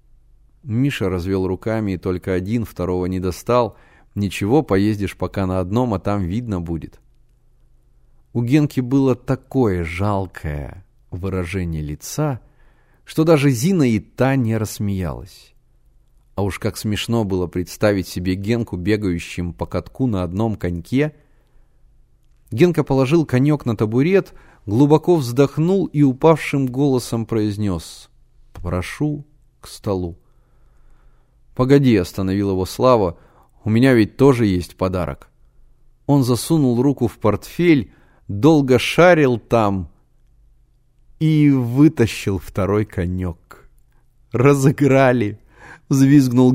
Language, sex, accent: Russian, male, native